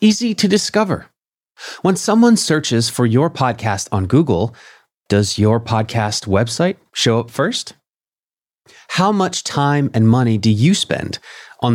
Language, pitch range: English, 115-160 Hz